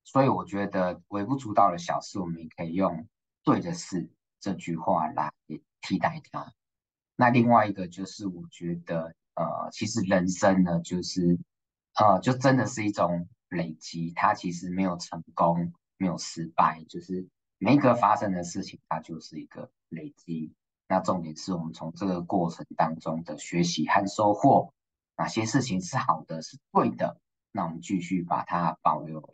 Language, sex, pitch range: Chinese, male, 80-95 Hz